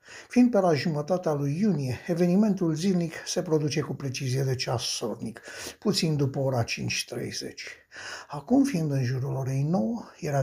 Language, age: Romanian, 60-79